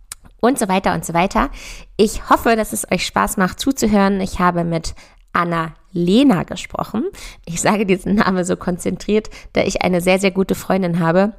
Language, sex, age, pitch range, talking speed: German, female, 20-39, 175-210 Hz, 175 wpm